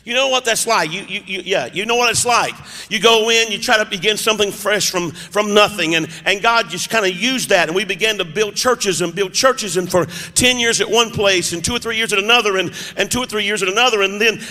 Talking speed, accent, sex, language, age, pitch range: 275 wpm, American, male, English, 50-69, 205-275 Hz